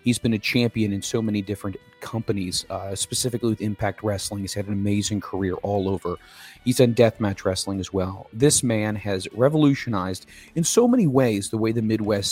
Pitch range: 100-120 Hz